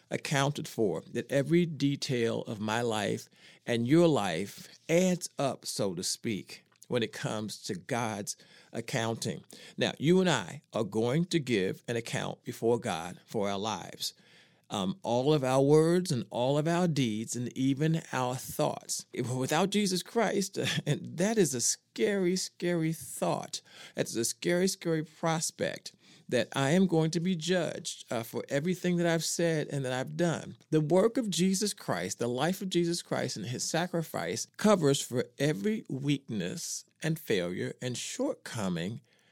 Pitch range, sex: 125-175 Hz, male